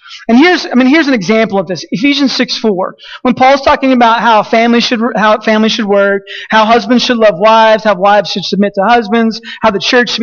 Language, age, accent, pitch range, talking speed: English, 30-49, American, 210-250 Hz, 225 wpm